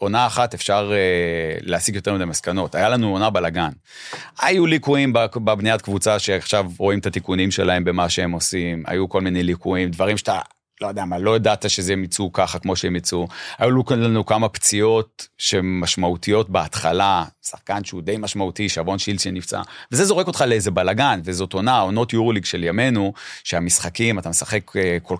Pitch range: 95-120 Hz